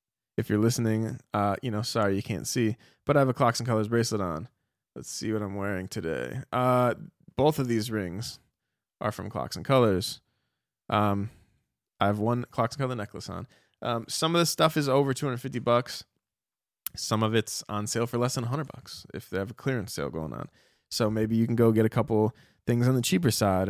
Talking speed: 215 wpm